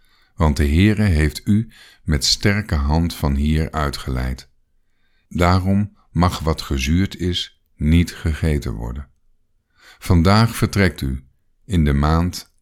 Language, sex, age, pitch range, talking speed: Dutch, male, 50-69, 75-100 Hz, 120 wpm